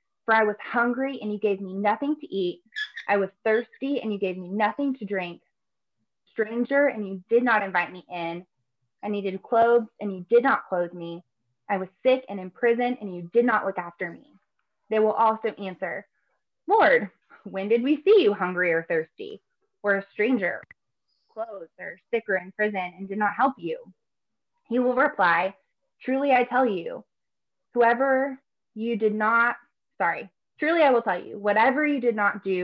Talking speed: 185 wpm